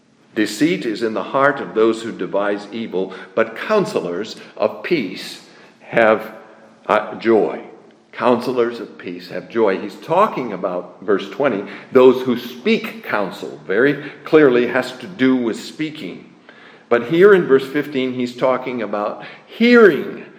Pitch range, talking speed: 120-165 Hz, 140 wpm